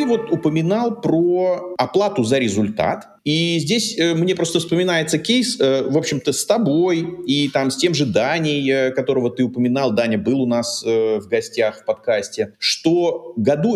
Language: Russian